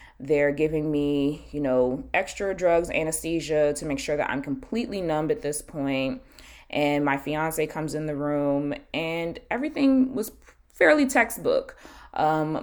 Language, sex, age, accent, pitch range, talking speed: English, female, 20-39, American, 145-205 Hz, 145 wpm